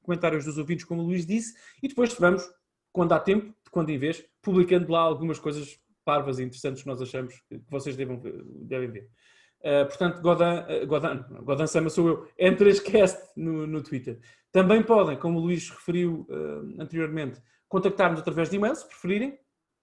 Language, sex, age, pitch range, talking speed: Portuguese, male, 20-39, 165-195 Hz, 170 wpm